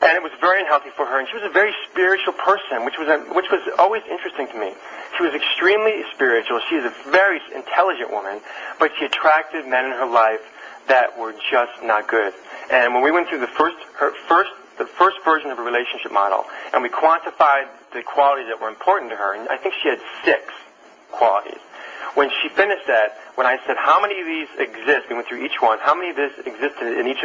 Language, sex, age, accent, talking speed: English, male, 40-59, American, 225 wpm